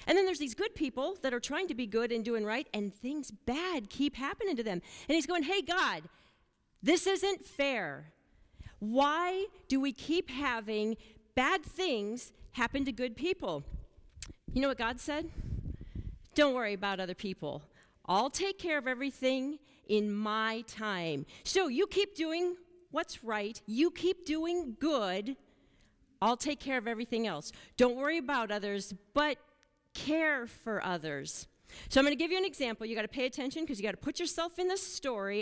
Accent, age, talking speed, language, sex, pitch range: American, 40-59, 180 wpm, English, female, 215-300 Hz